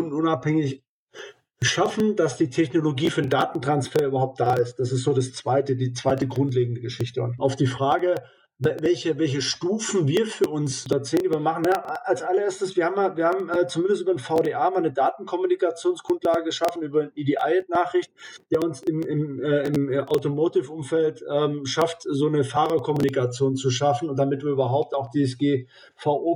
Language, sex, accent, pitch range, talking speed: German, male, German, 135-165 Hz, 170 wpm